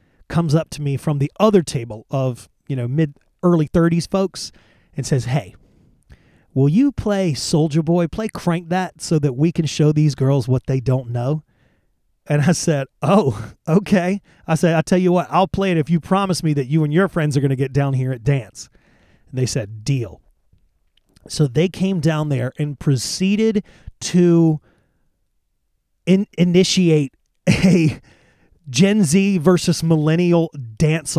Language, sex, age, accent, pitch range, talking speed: English, male, 30-49, American, 140-170 Hz, 165 wpm